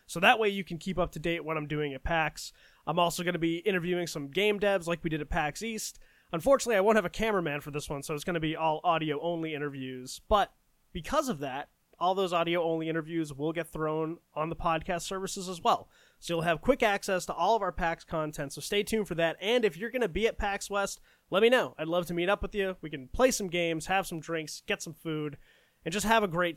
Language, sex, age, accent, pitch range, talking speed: English, male, 20-39, American, 155-195 Hz, 255 wpm